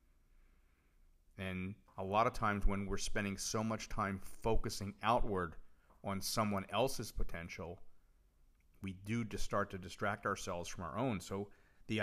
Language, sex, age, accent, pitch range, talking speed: English, male, 40-59, American, 75-105 Hz, 140 wpm